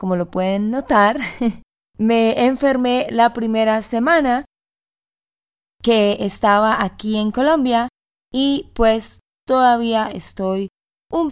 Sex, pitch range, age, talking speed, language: female, 205-255 Hz, 20-39, 100 wpm, Spanish